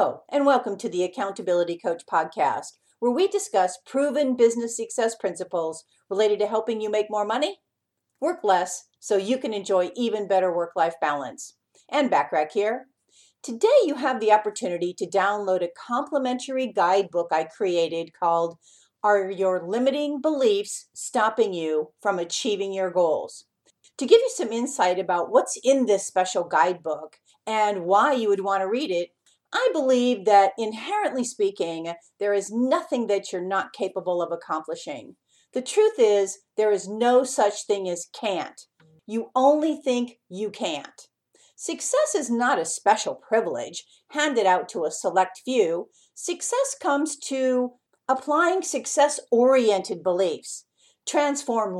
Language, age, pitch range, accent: English, 50-69, 185-275 Hz, American